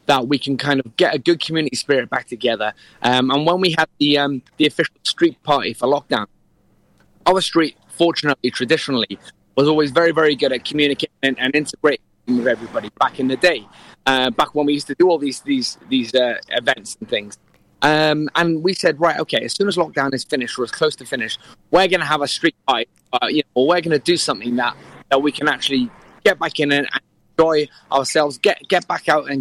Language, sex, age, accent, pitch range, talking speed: English, male, 20-39, British, 135-165 Hz, 220 wpm